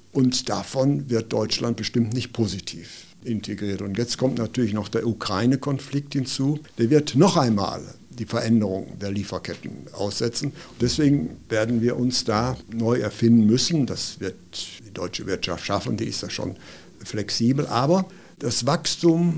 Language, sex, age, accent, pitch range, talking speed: German, male, 60-79, German, 115-135 Hz, 145 wpm